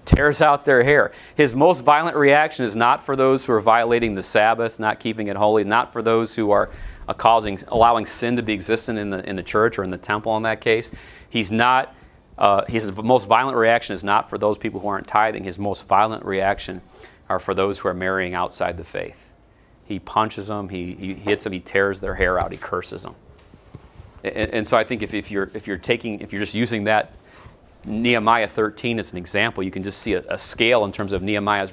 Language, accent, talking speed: English, American, 225 wpm